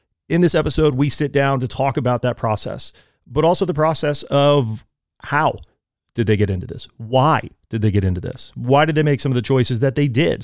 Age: 30-49